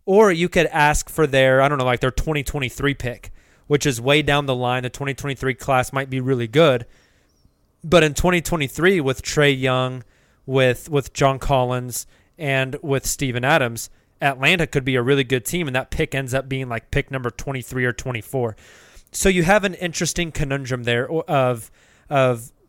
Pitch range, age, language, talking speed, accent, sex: 130-155 Hz, 20-39, English, 180 wpm, American, male